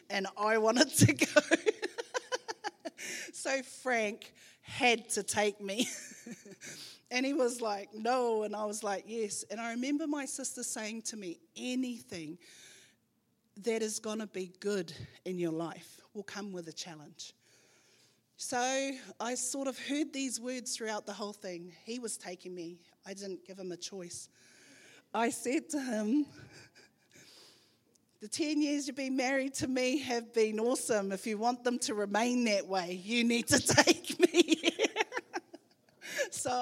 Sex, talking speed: female, 155 wpm